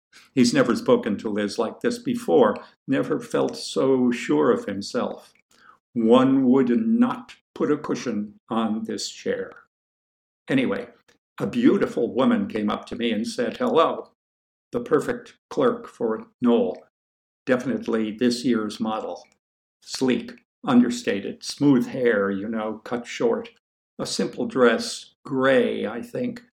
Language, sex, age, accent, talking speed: English, male, 50-69, American, 130 wpm